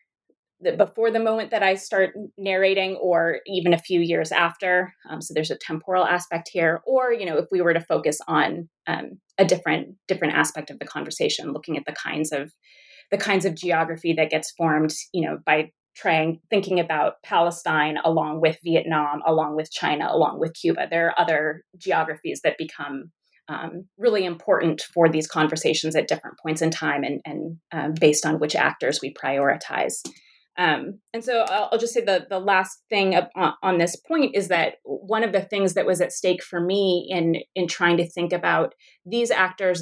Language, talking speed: English, 185 wpm